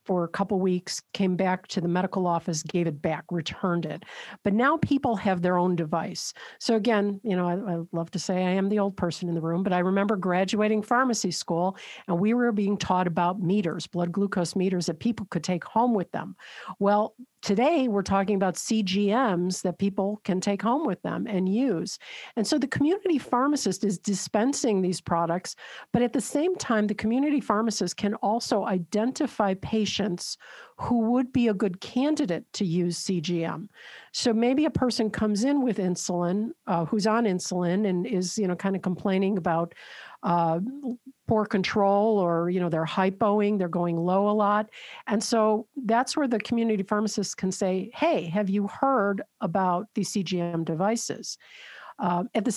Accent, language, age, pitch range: American, English, 50-69, 180-225 Hz